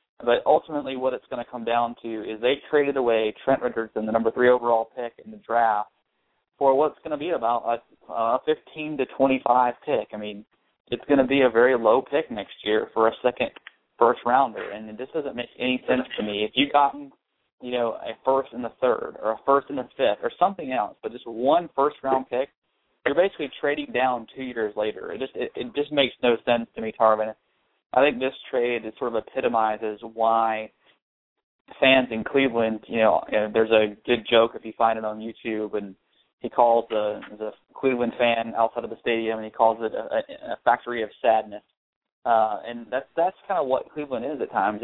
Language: English